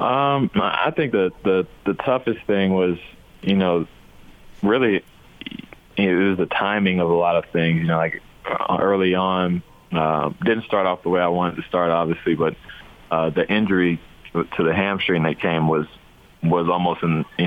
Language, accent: English, American